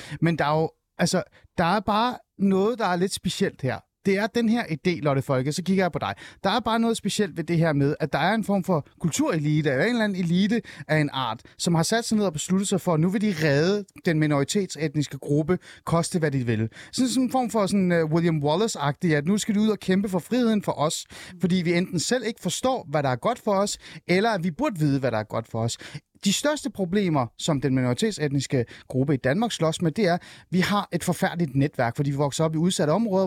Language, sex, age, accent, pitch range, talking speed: Danish, male, 30-49, native, 145-195 Hz, 250 wpm